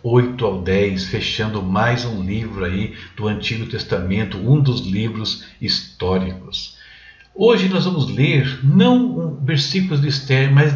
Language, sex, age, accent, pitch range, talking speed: Portuguese, male, 60-79, Brazilian, 110-150 Hz, 140 wpm